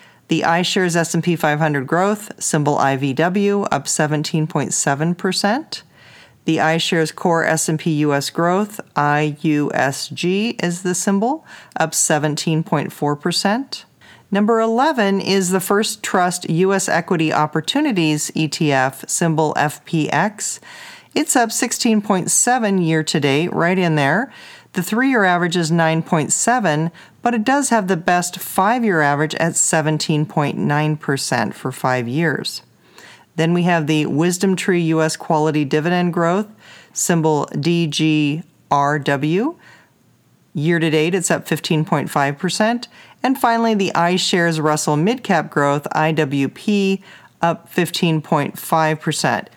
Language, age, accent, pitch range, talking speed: English, 40-59, American, 155-190 Hz, 115 wpm